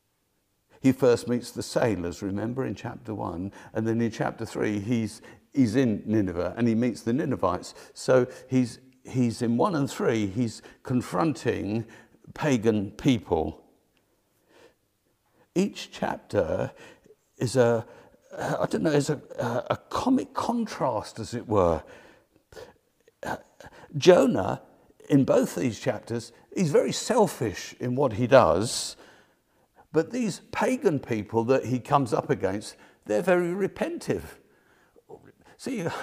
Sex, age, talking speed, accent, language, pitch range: male, 50-69, 125 wpm, British, English, 115-165 Hz